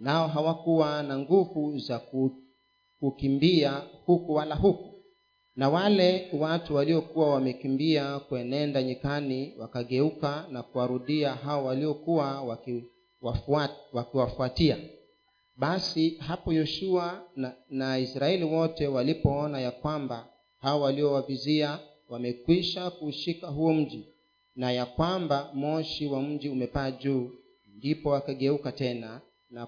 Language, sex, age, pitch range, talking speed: Swahili, male, 40-59, 130-160 Hz, 100 wpm